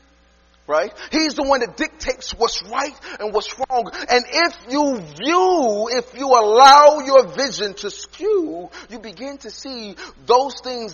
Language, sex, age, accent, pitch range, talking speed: English, male, 30-49, American, 180-300 Hz, 155 wpm